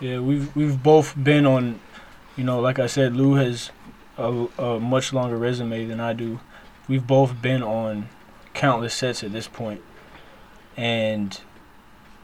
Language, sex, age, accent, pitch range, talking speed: English, male, 20-39, American, 110-130 Hz, 150 wpm